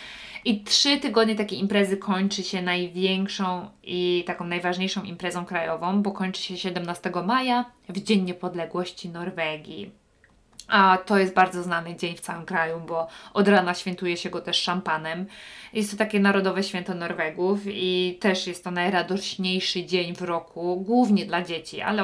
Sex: female